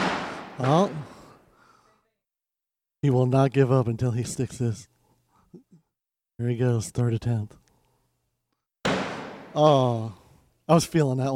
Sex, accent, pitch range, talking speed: male, American, 125-170 Hz, 105 wpm